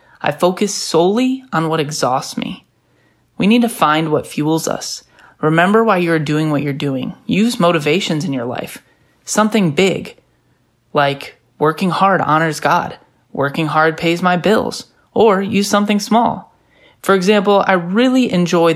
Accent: American